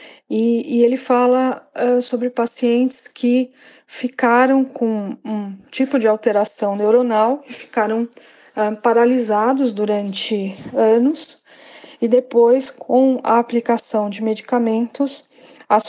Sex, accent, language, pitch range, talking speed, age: female, Brazilian, Portuguese, 220-265 Hz, 110 wpm, 20-39